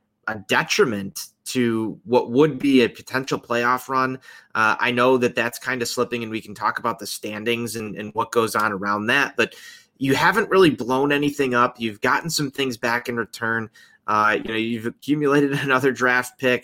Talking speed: 195 wpm